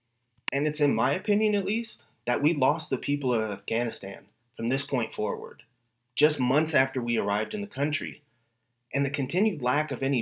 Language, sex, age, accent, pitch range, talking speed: English, male, 30-49, American, 120-145 Hz, 190 wpm